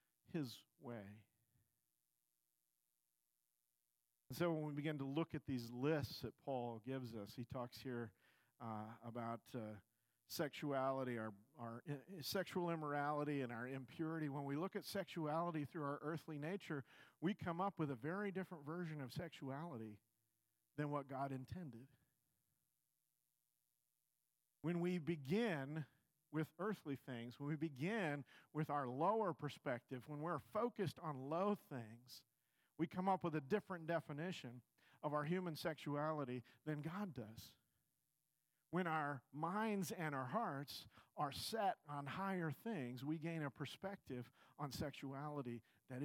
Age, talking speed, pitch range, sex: 50-69, 135 wpm, 130-165 Hz, male